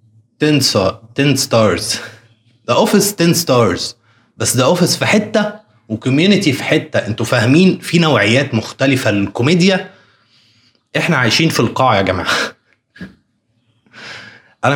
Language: Arabic